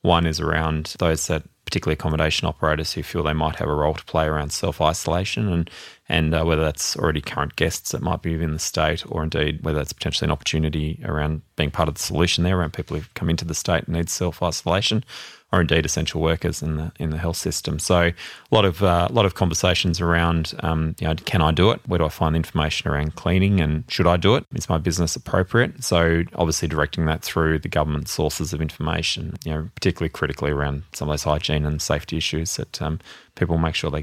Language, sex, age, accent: English, male, 20-39, Australian